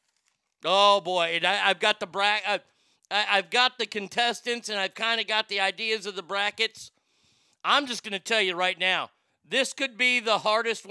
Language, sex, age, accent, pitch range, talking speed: English, male, 50-69, American, 175-215 Hz, 175 wpm